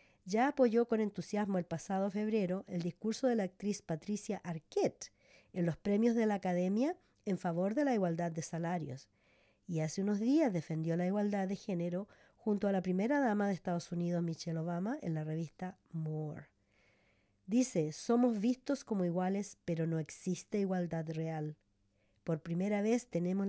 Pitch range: 160-210 Hz